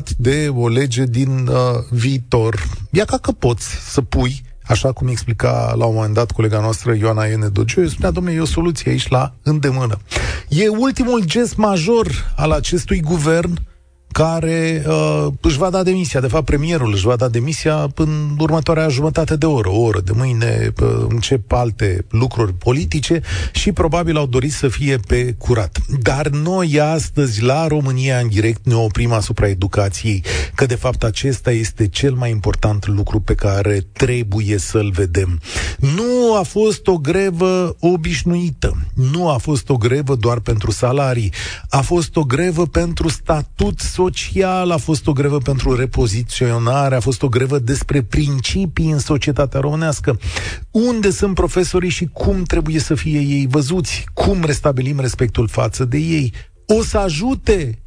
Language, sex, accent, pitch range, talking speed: Romanian, male, native, 115-160 Hz, 160 wpm